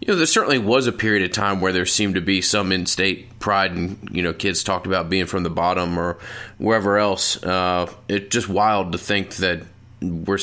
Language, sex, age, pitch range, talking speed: English, male, 20-39, 90-105 Hz, 220 wpm